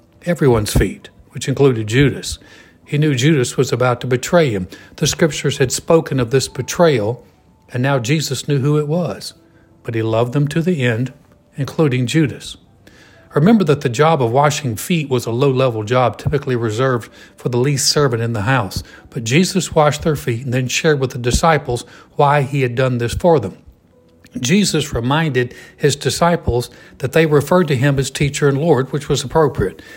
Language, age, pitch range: English, 60-79, 125-150 Hz